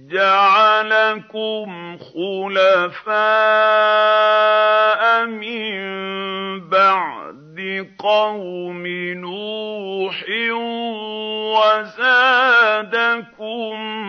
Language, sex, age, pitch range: Arabic, male, 50-69, 190-230 Hz